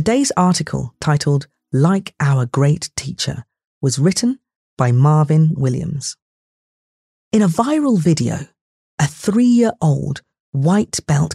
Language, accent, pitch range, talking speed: English, British, 145-195 Hz, 100 wpm